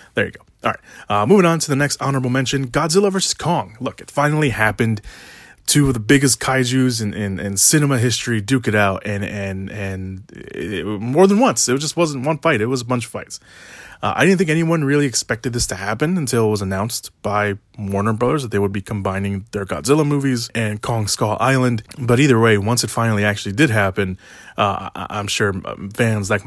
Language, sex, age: English, male, 20-39